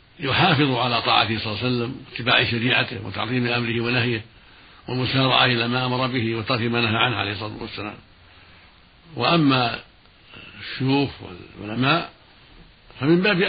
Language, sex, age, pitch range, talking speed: Arabic, male, 70-89, 115-130 Hz, 130 wpm